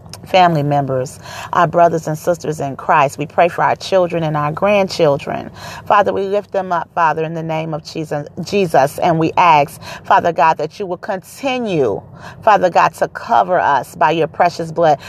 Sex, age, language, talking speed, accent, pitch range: female, 40-59, English, 180 wpm, American, 150-195 Hz